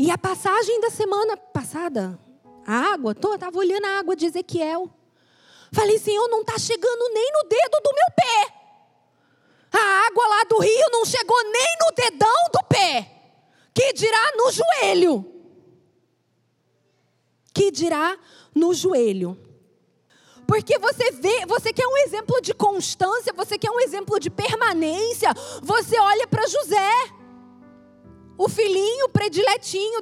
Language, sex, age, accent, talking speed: Portuguese, female, 20-39, Brazilian, 140 wpm